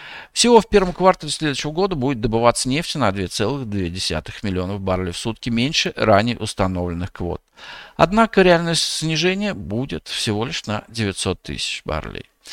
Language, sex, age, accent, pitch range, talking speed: Russian, male, 50-69, native, 100-165 Hz, 140 wpm